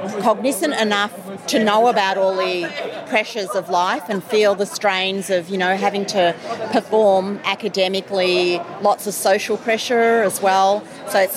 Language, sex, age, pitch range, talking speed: English, female, 40-59, 180-205 Hz, 155 wpm